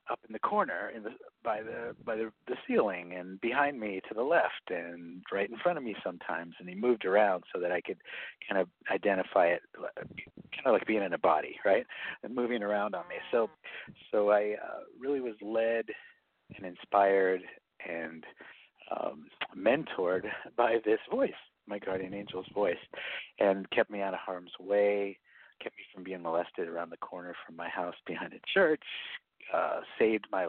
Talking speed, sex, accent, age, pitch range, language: 185 wpm, male, American, 50-69, 95-110 Hz, English